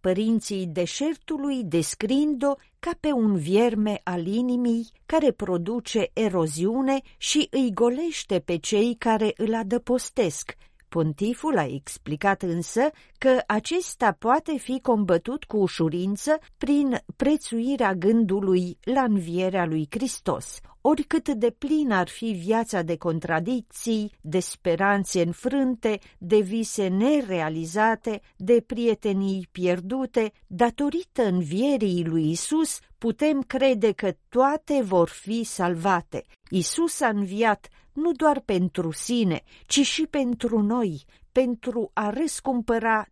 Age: 40-59